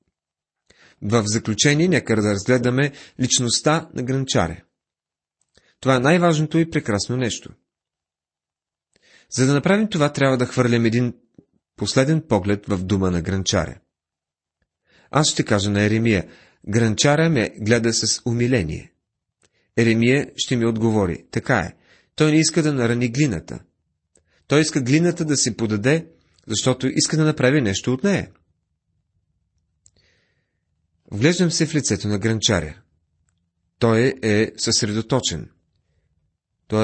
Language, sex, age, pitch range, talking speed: Bulgarian, male, 30-49, 100-140 Hz, 120 wpm